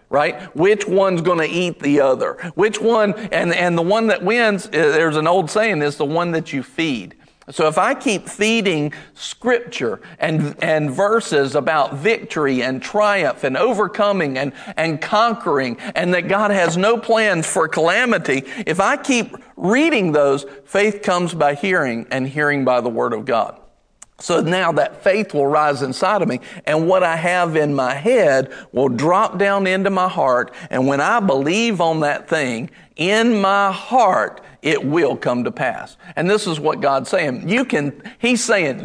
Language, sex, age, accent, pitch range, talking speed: English, male, 50-69, American, 150-215 Hz, 180 wpm